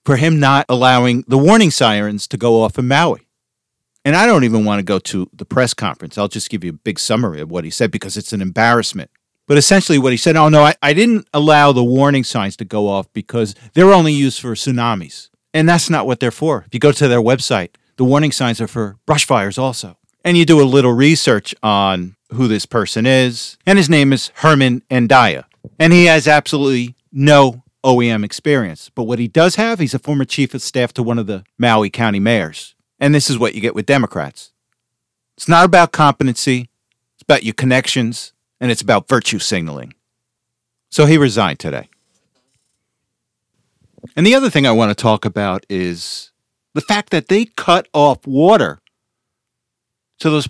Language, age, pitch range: English, 50-69, 115-150 Hz